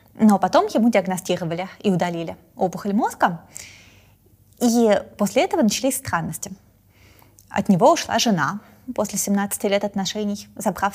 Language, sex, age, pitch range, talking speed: Russian, female, 20-39, 180-215 Hz, 120 wpm